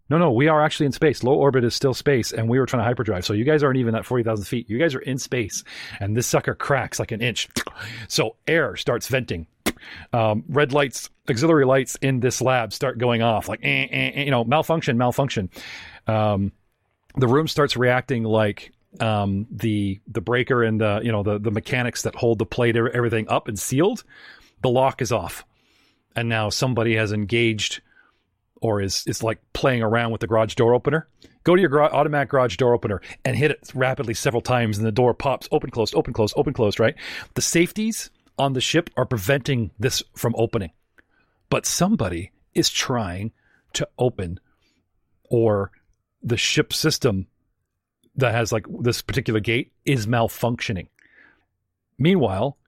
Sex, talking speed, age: male, 180 wpm, 40-59